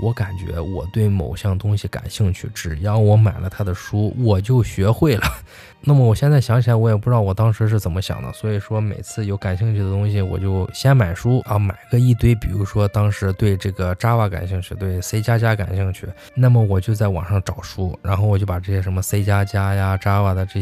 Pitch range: 95-110 Hz